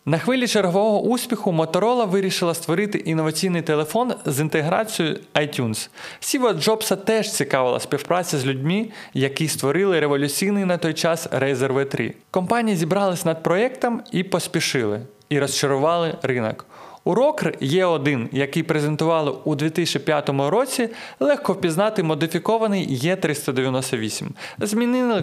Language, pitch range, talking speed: Ukrainian, 135-190 Hz, 115 wpm